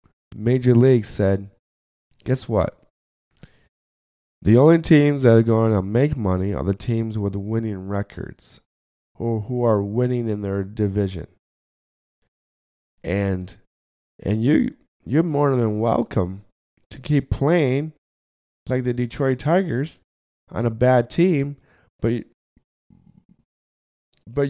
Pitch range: 100-135 Hz